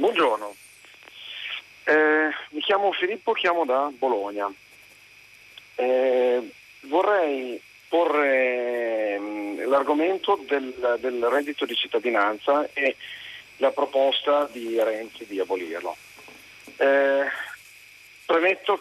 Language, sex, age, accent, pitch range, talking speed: Italian, male, 40-59, native, 120-165 Hz, 85 wpm